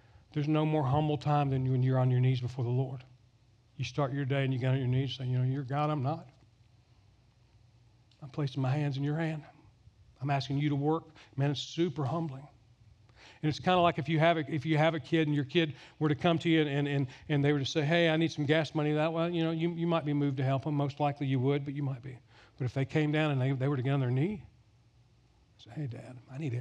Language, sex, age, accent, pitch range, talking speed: English, male, 40-59, American, 120-150 Hz, 275 wpm